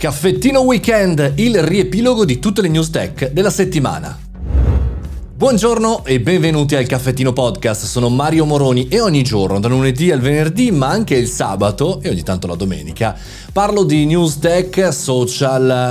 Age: 30-49